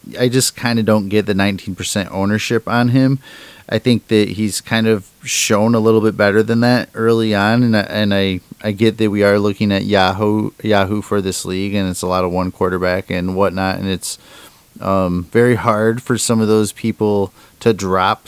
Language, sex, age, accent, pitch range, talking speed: English, male, 30-49, American, 100-115 Hz, 205 wpm